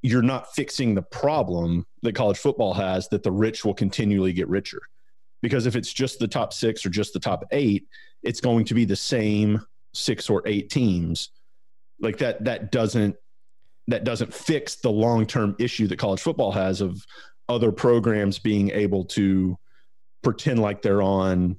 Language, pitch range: English, 95-115 Hz